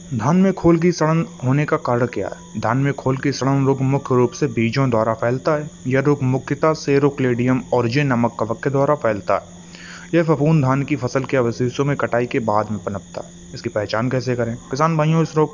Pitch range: 115-140 Hz